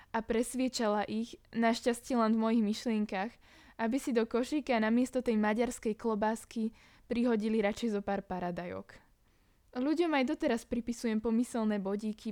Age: 20-39